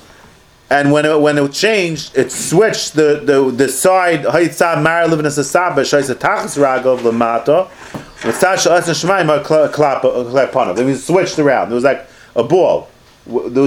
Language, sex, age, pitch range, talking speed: English, male, 30-49, 125-160 Hz, 90 wpm